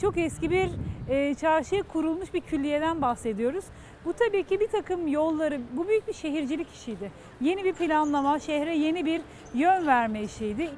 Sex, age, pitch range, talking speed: female, 40-59, 275-350 Hz, 155 wpm